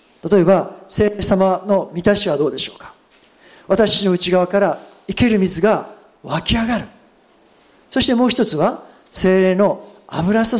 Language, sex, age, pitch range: Japanese, male, 50-69, 160-225 Hz